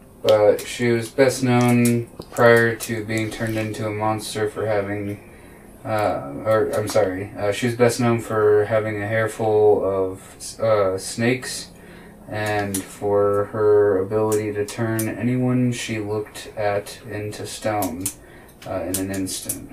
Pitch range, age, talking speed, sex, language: 100-120 Hz, 20-39, 140 wpm, male, English